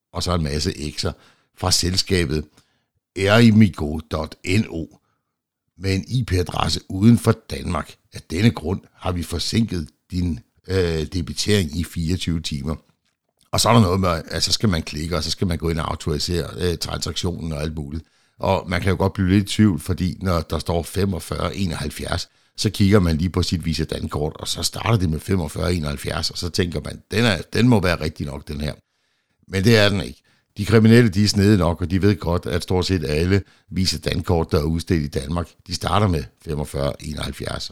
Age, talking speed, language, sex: 60-79, 195 wpm, Danish, male